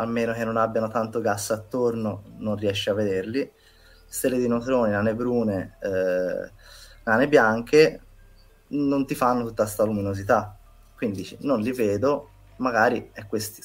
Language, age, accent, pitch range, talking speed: Italian, 20-39, native, 100-120 Hz, 145 wpm